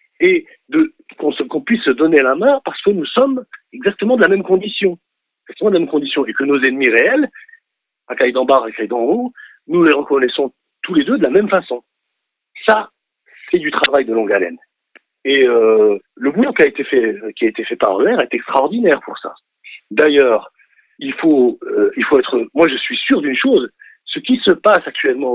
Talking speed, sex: 200 wpm, male